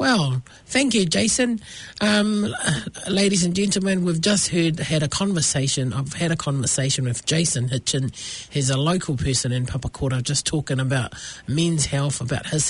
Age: 40-59